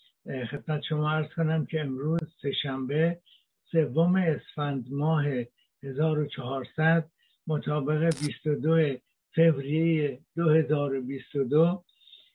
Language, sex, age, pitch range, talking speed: Persian, male, 60-79, 140-165 Hz, 75 wpm